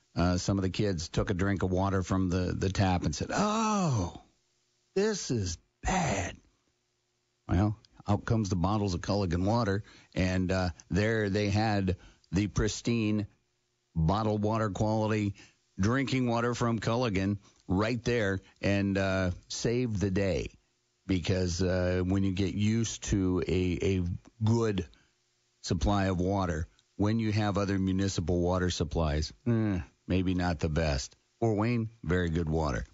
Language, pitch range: English, 90-110 Hz